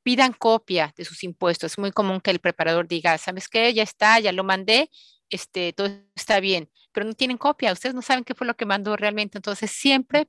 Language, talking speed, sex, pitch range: Spanish, 220 wpm, female, 175-220 Hz